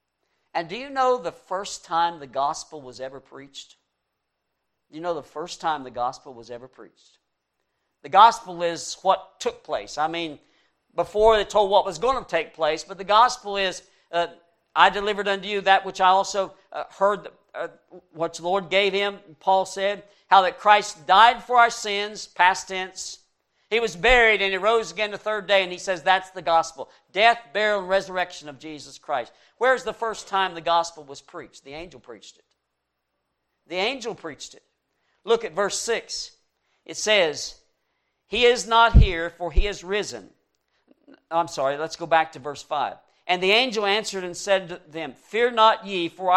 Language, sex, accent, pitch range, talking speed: English, male, American, 165-215 Hz, 190 wpm